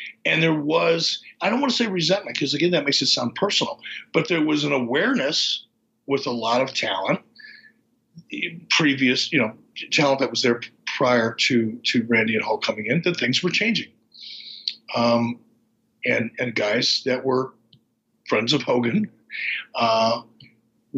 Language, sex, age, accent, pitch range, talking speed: English, male, 50-69, American, 120-165 Hz, 165 wpm